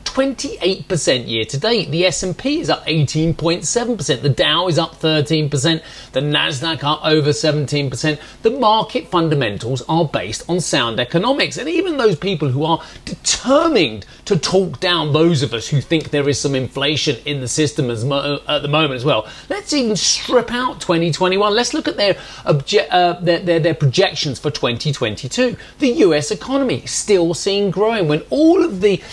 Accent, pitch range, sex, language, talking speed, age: British, 145-195 Hz, male, English, 170 wpm, 30-49